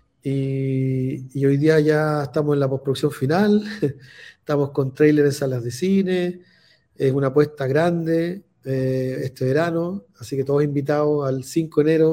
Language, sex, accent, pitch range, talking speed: Spanish, male, Argentinian, 135-160 Hz, 160 wpm